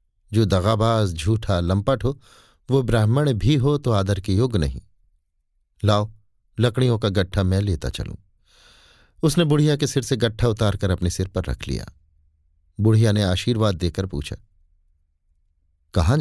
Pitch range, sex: 90-125 Hz, male